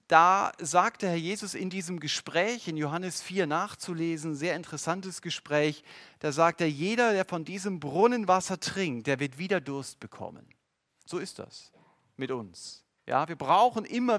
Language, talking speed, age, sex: German, 160 wpm, 40-59, male